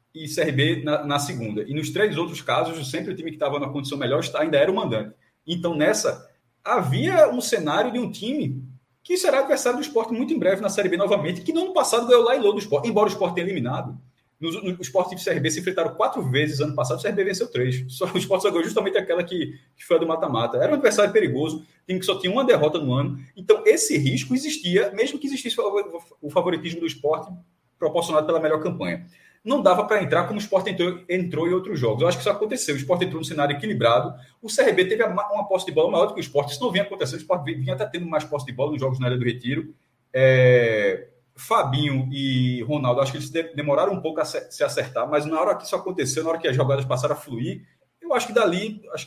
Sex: male